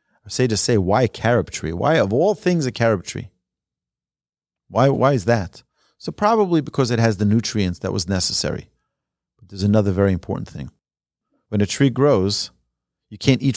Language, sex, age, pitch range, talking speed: English, male, 40-59, 100-135 Hz, 180 wpm